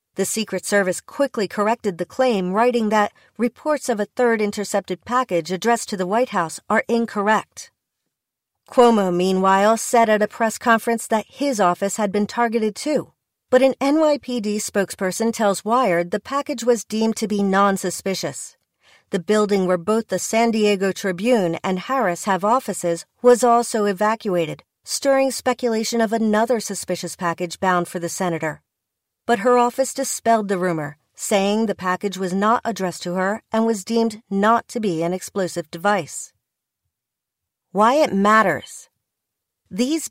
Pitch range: 190-235 Hz